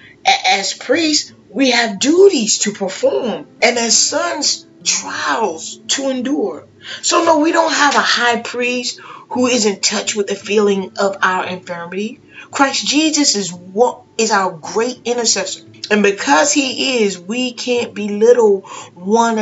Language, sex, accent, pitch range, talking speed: English, female, American, 170-230 Hz, 145 wpm